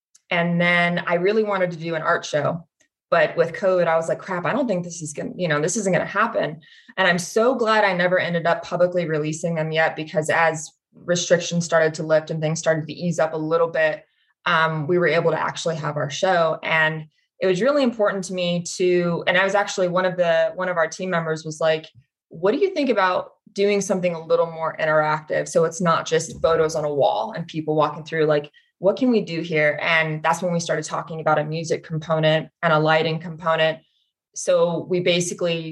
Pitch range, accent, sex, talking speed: 160-185 Hz, American, female, 225 wpm